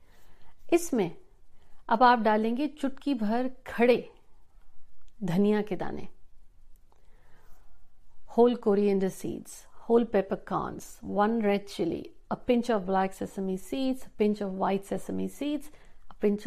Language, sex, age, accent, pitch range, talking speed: Hindi, female, 60-79, native, 200-245 Hz, 115 wpm